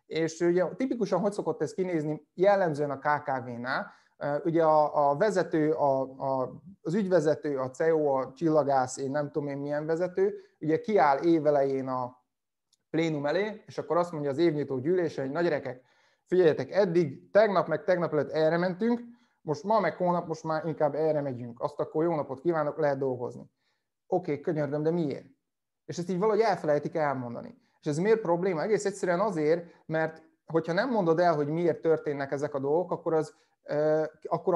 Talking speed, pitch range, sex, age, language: 170 wpm, 145-180 Hz, male, 30-49, Hungarian